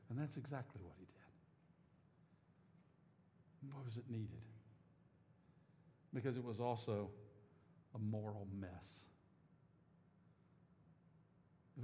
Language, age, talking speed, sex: English, 60-79, 90 wpm, male